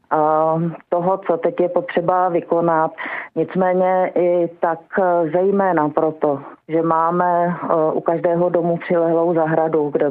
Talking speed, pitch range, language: 115 wpm, 160-185 Hz, Czech